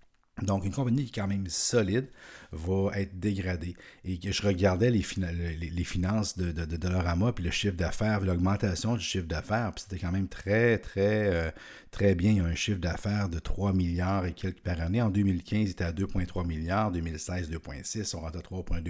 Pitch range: 90-105 Hz